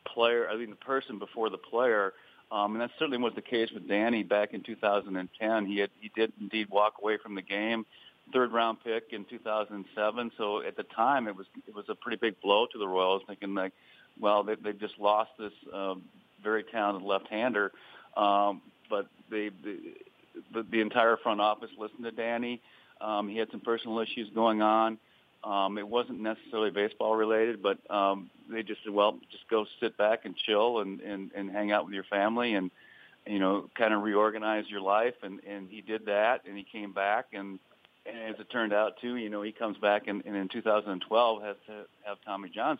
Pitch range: 100-115 Hz